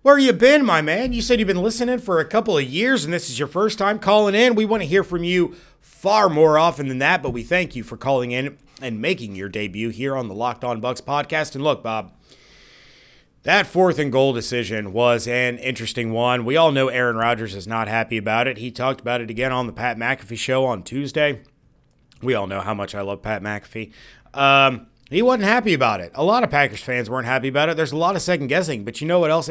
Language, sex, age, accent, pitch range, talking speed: English, male, 30-49, American, 120-170 Hz, 245 wpm